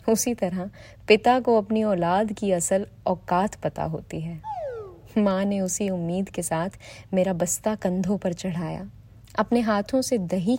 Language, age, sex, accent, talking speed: Hindi, 20-39, female, native, 145 wpm